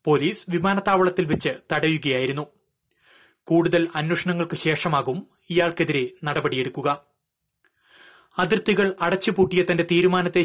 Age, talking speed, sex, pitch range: 30-49, 75 wpm, male, 160-185 Hz